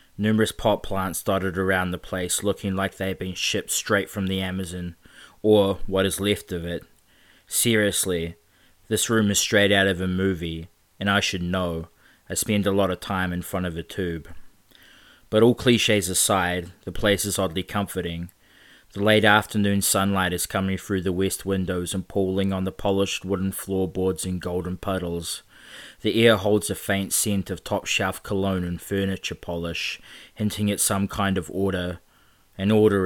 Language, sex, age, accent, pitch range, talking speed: English, male, 20-39, Australian, 90-100 Hz, 175 wpm